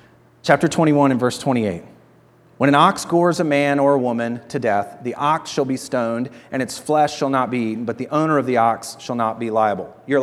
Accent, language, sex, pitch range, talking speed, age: American, English, male, 115-145 Hz, 230 wpm, 40-59